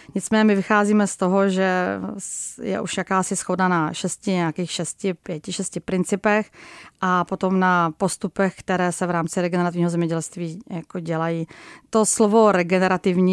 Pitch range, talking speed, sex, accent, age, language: 175-200 Hz, 145 wpm, female, native, 30-49, Czech